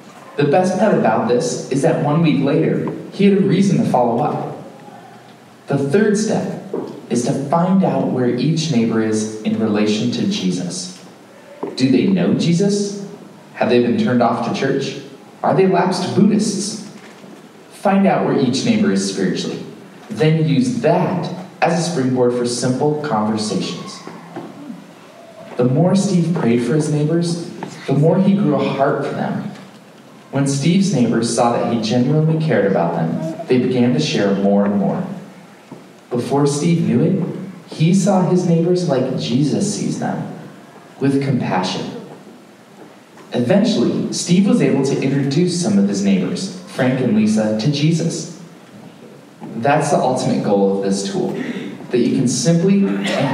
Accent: American